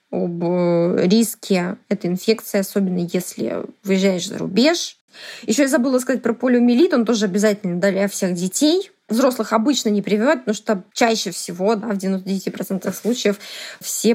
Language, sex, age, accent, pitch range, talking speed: Russian, female, 20-39, native, 195-240 Hz, 145 wpm